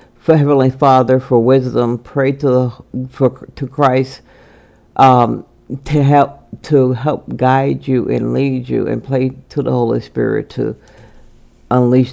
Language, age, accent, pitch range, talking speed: English, 50-69, American, 120-135 Hz, 145 wpm